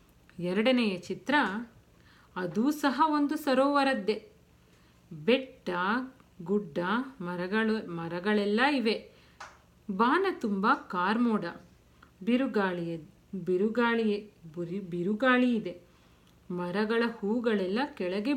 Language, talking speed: Kannada, 70 wpm